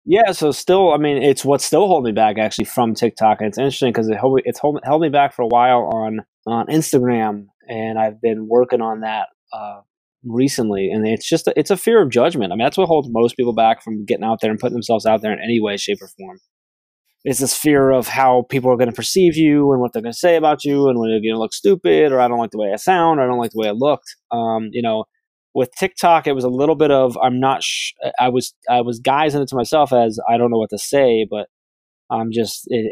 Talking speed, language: 255 wpm, English